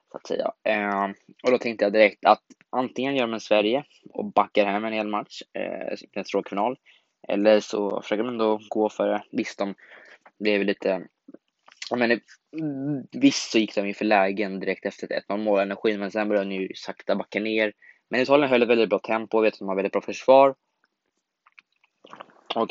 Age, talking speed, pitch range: 20-39, 180 wpm, 100-115 Hz